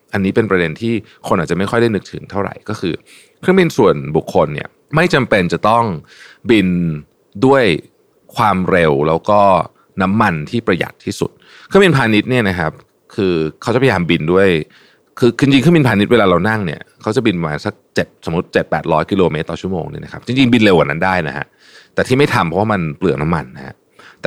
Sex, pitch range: male, 85-115 Hz